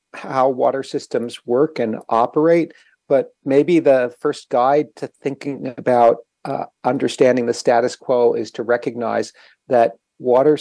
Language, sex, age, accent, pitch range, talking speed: English, male, 40-59, American, 110-145 Hz, 135 wpm